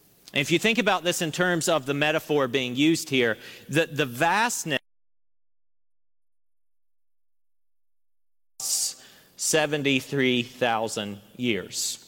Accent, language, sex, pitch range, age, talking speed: American, English, male, 125-170 Hz, 40-59, 90 wpm